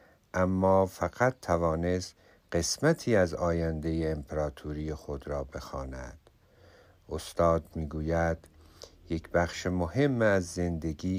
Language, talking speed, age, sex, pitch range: Persian, 95 wpm, 50-69, male, 85-105 Hz